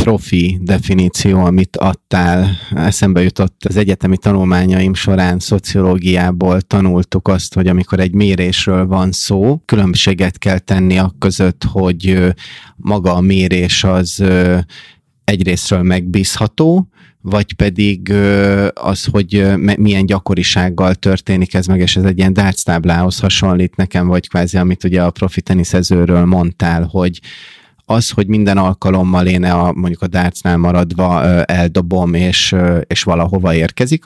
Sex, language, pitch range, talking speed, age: male, Hungarian, 90-100 Hz, 120 wpm, 30-49